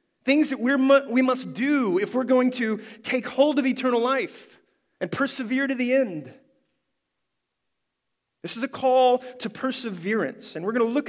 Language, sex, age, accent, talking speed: English, male, 30-49, American, 170 wpm